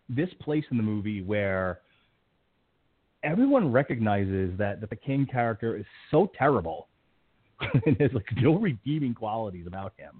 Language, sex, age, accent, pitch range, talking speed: English, male, 30-49, American, 105-145 Hz, 140 wpm